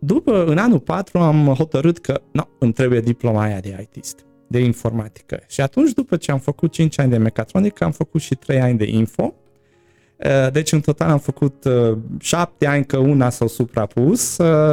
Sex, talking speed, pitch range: male, 185 wpm, 110-145 Hz